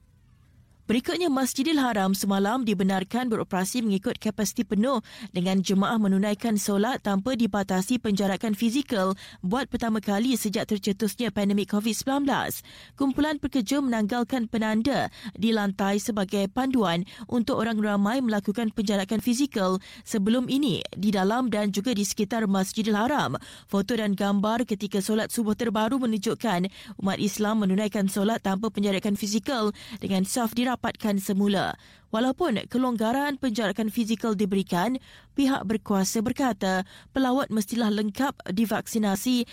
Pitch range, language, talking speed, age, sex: 200-240 Hz, Malay, 120 wpm, 20-39, female